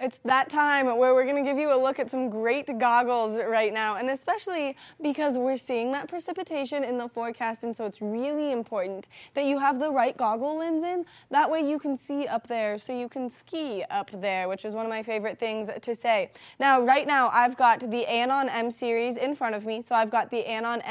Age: 20-39